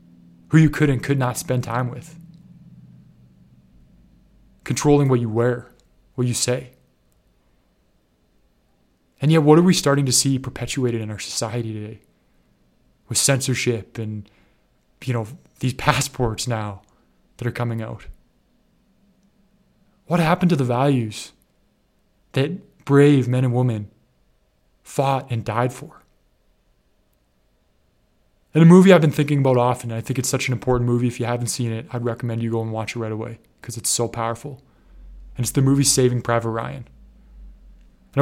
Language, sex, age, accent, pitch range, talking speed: English, male, 20-39, American, 115-135 Hz, 150 wpm